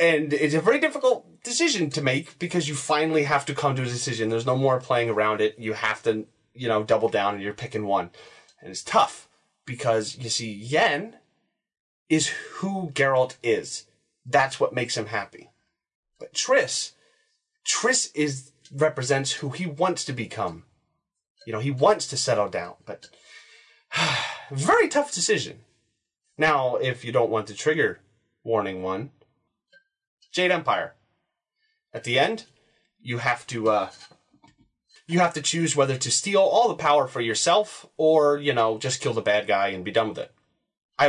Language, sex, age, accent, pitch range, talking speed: English, male, 30-49, American, 115-175 Hz, 170 wpm